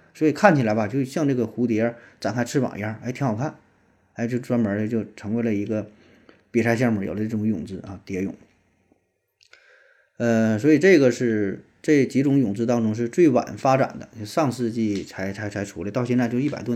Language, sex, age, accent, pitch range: Chinese, male, 20-39, native, 105-130 Hz